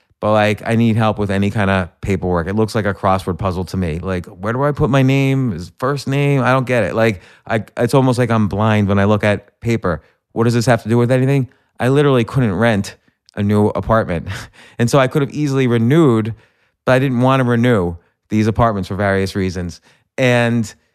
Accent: American